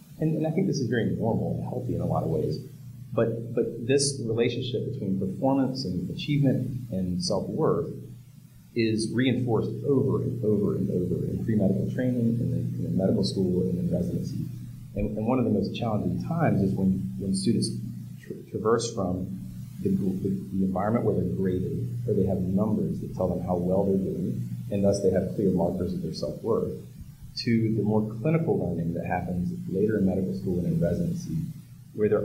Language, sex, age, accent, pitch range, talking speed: English, male, 40-59, American, 95-130 Hz, 180 wpm